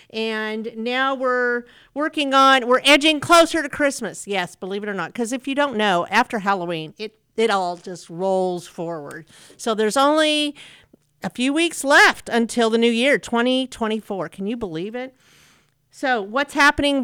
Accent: American